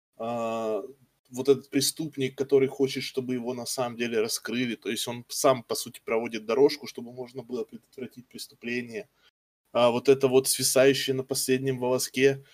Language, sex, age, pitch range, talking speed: Russian, male, 20-39, 120-150 Hz, 150 wpm